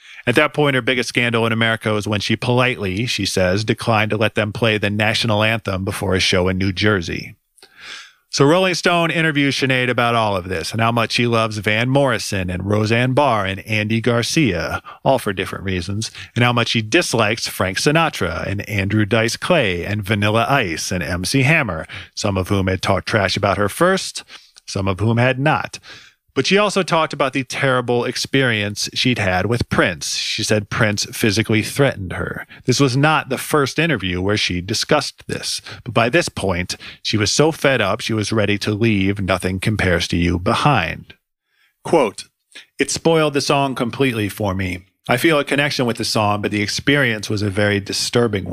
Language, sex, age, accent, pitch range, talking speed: English, male, 40-59, American, 100-130 Hz, 190 wpm